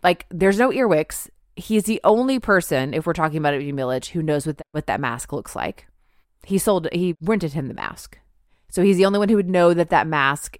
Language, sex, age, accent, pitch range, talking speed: English, female, 30-49, American, 145-190 Hz, 225 wpm